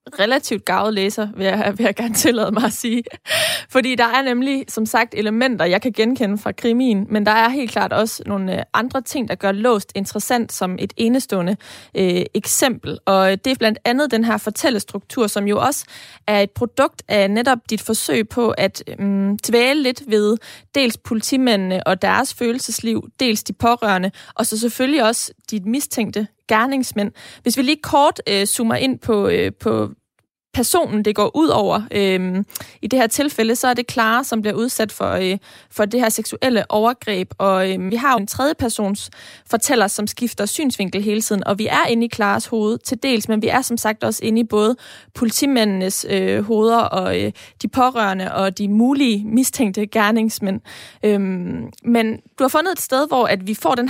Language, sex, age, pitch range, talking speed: Danish, female, 20-39, 205-245 Hz, 185 wpm